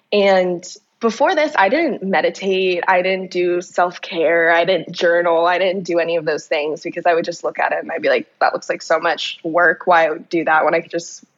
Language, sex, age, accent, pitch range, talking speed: English, female, 20-39, American, 175-210 Hz, 230 wpm